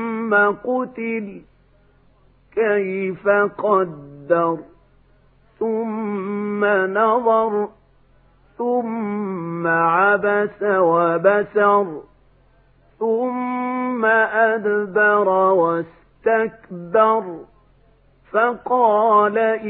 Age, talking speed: 50-69, 40 wpm